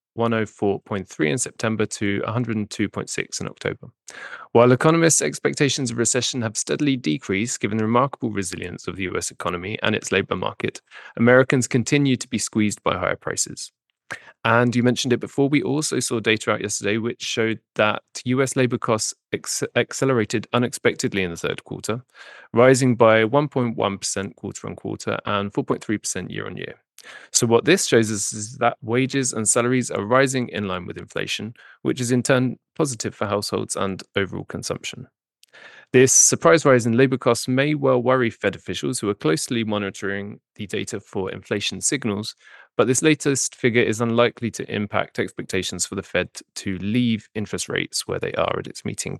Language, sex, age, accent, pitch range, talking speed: English, male, 20-39, British, 105-130 Hz, 165 wpm